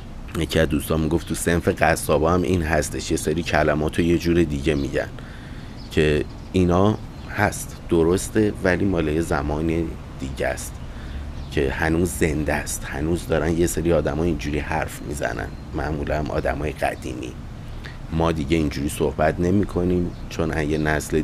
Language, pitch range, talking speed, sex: Persian, 75-90 Hz, 145 wpm, male